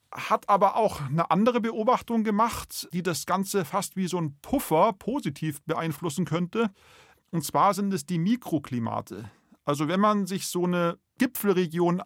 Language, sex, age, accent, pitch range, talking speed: German, male, 40-59, German, 155-190 Hz, 155 wpm